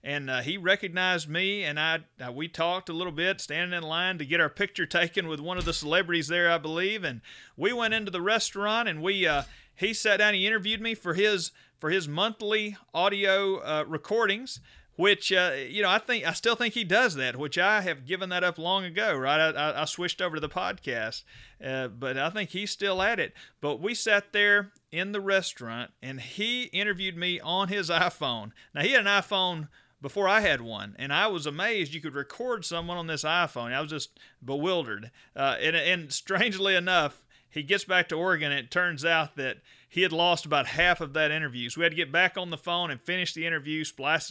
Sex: male